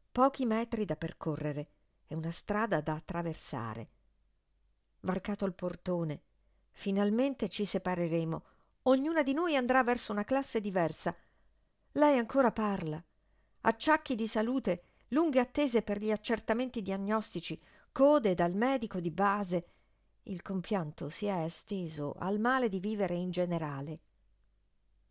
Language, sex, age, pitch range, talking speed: Italian, female, 50-69, 165-250 Hz, 120 wpm